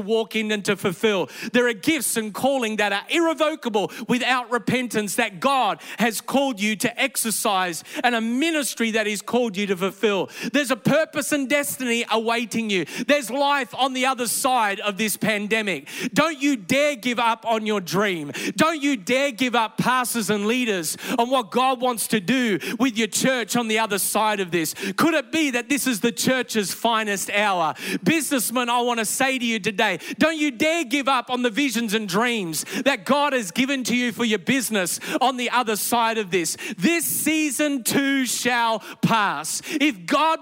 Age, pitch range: 30-49, 220-275 Hz